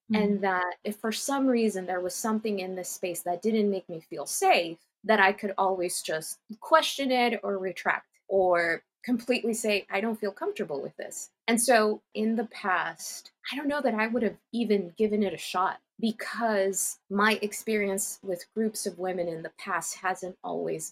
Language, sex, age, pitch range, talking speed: English, female, 20-39, 180-220 Hz, 185 wpm